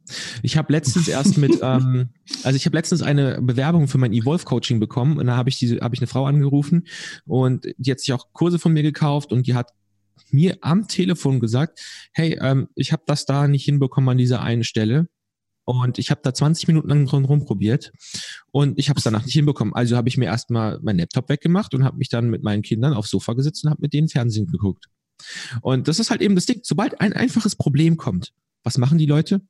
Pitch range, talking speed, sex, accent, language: 125-160 Hz, 220 wpm, male, German, German